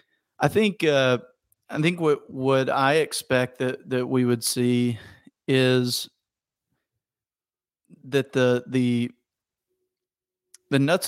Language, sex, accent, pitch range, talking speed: English, male, American, 125-145 Hz, 115 wpm